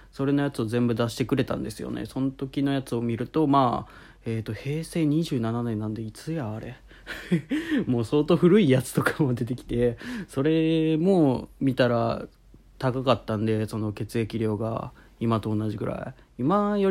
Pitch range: 115-140 Hz